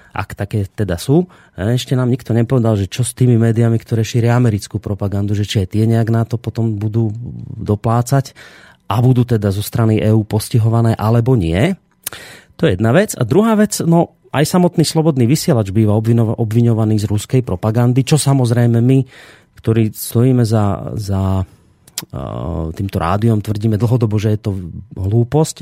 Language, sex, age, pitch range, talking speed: Slovak, male, 30-49, 105-130 Hz, 165 wpm